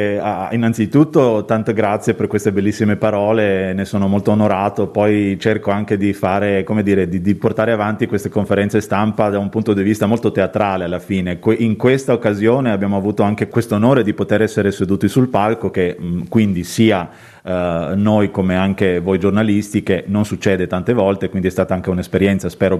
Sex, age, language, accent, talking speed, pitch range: male, 30-49, Italian, native, 185 wpm, 95-110 Hz